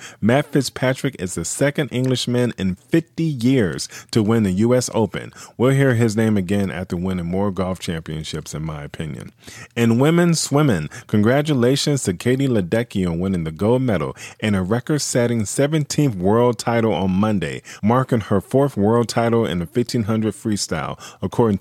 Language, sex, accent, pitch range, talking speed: English, male, American, 95-130 Hz, 160 wpm